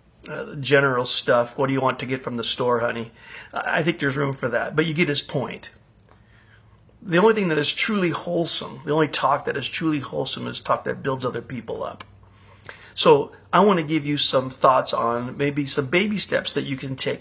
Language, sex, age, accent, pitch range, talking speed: English, male, 40-59, American, 125-160 Hz, 220 wpm